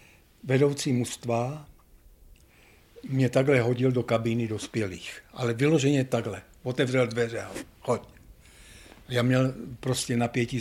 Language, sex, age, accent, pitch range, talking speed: Czech, male, 60-79, native, 105-120 Hz, 100 wpm